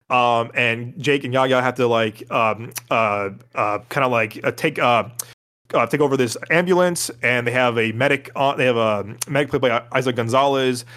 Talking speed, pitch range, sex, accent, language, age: 200 wpm, 120-140 Hz, male, American, English, 20-39